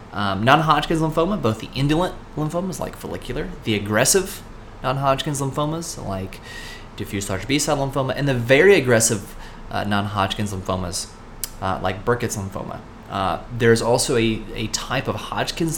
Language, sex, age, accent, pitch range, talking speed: English, male, 30-49, American, 105-130 Hz, 140 wpm